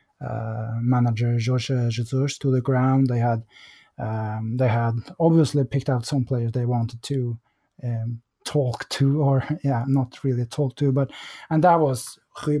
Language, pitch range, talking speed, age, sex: English, 115-140 Hz, 160 wpm, 20-39, male